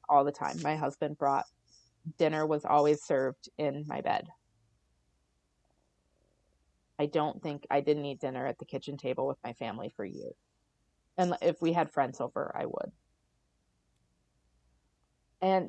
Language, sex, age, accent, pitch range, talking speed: English, female, 30-49, American, 140-170 Hz, 145 wpm